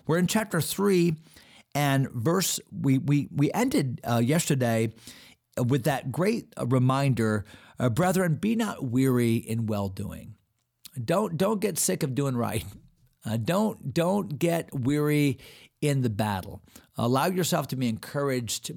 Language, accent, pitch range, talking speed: English, American, 115-160 Hz, 140 wpm